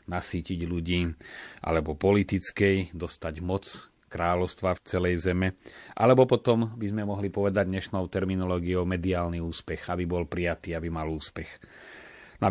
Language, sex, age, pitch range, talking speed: Slovak, male, 30-49, 90-100 Hz, 130 wpm